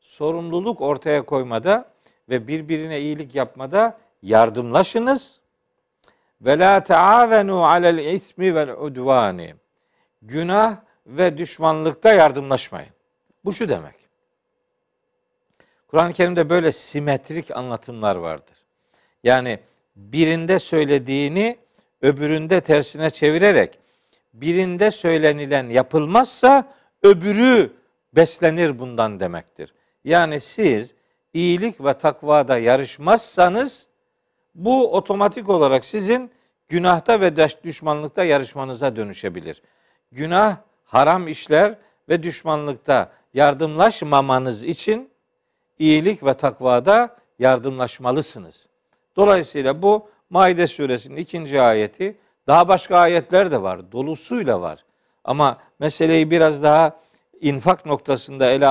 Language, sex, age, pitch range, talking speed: Turkish, male, 50-69, 140-200 Hz, 90 wpm